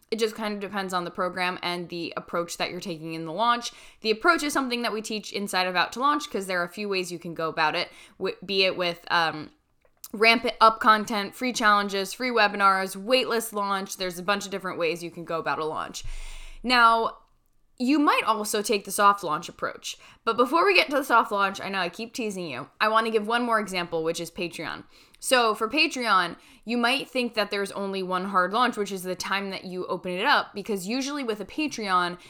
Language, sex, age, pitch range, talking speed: English, female, 10-29, 180-230 Hz, 230 wpm